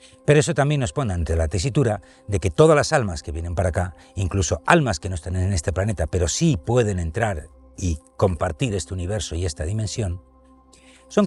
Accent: Spanish